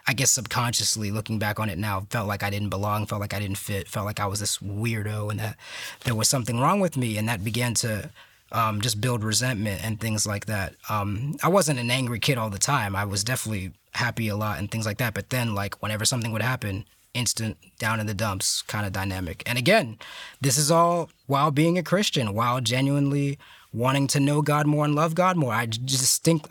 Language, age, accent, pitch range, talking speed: English, 20-39, American, 110-150 Hz, 225 wpm